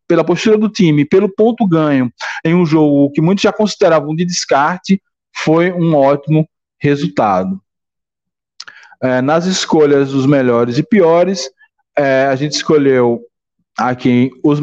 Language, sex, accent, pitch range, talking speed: Portuguese, male, Brazilian, 140-180 Hz, 125 wpm